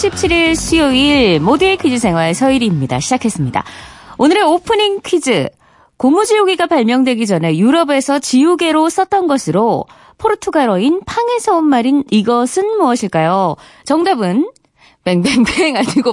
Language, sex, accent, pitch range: Korean, female, native, 210-355 Hz